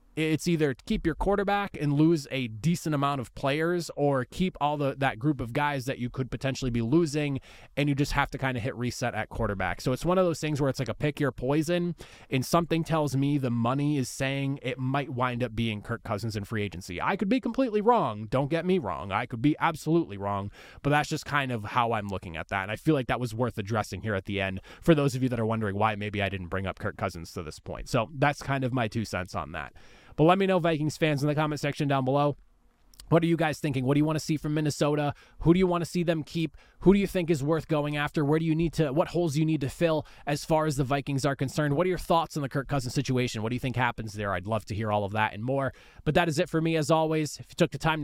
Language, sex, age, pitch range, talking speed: English, male, 20-39, 115-160 Hz, 285 wpm